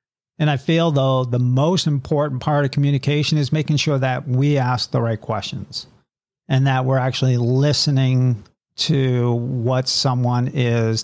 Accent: American